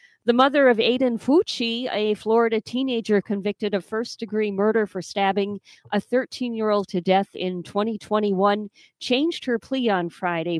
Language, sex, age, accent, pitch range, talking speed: English, female, 50-69, American, 180-220 Hz, 140 wpm